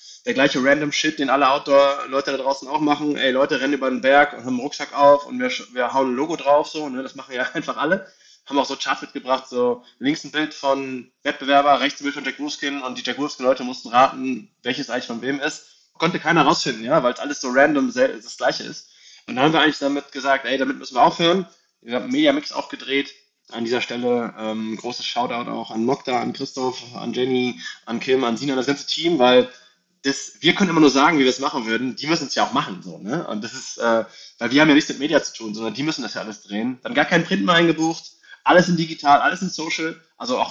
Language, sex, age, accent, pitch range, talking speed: German, male, 20-39, German, 130-175 Hz, 250 wpm